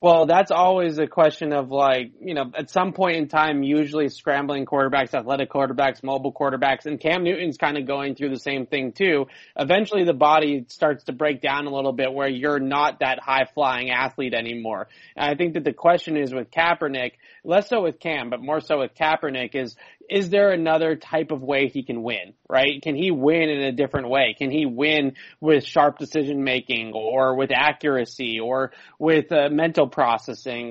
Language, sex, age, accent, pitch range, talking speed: English, male, 20-39, American, 135-155 Hz, 195 wpm